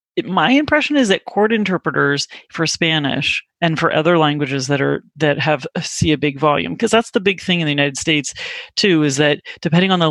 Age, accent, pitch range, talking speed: 30-49, American, 145-170 Hz, 210 wpm